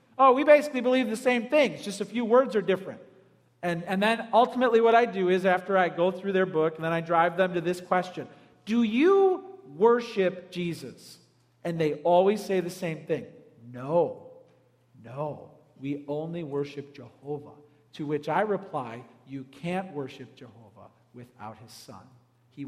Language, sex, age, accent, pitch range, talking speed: English, male, 40-59, American, 145-235 Hz, 170 wpm